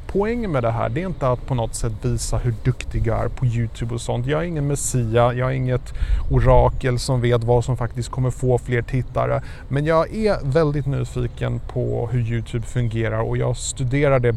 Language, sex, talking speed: Swedish, male, 210 wpm